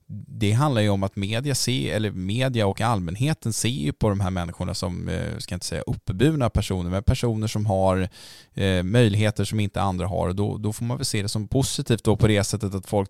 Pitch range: 95-120 Hz